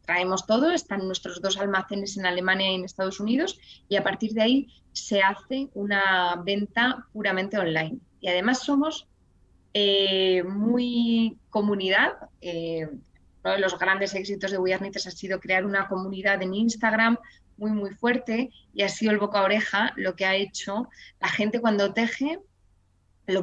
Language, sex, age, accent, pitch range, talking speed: Spanish, female, 20-39, Spanish, 185-220 Hz, 160 wpm